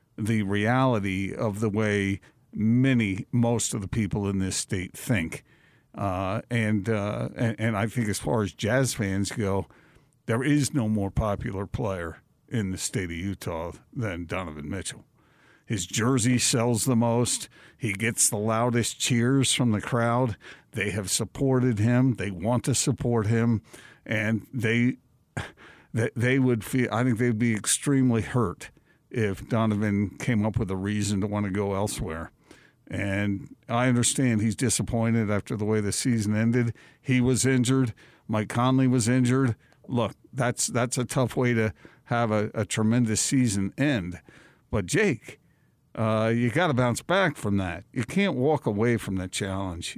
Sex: male